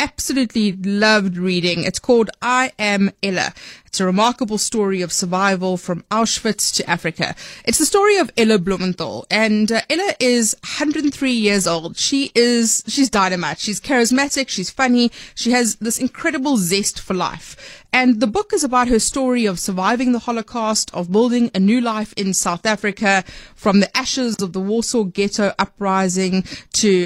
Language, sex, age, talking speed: English, female, 30-49, 160 wpm